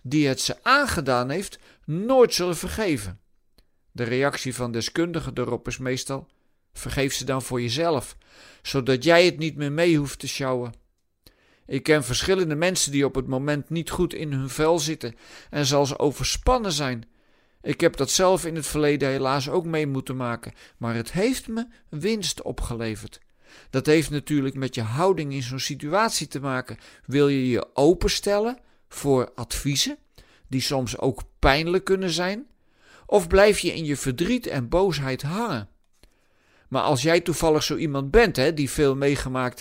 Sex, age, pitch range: male, 50-69, 125-170 Hz